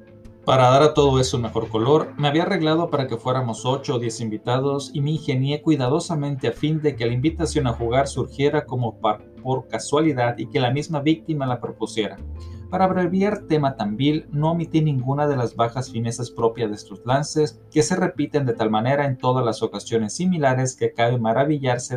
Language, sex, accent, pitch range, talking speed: Spanish, male, Mexican, 115-145 Hz, 195 wpm